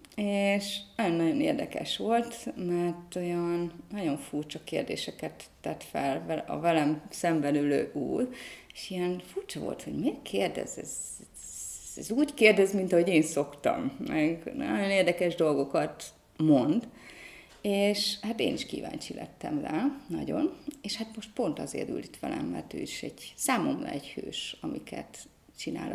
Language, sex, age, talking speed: Hungarian, female, 30-49, 140 wpm